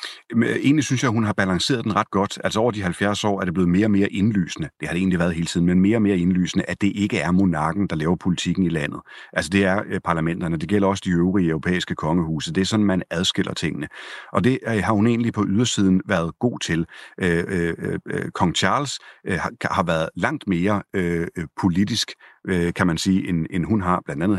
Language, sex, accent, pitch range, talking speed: Danish, male, native, 90-105 Hz, 210 wpm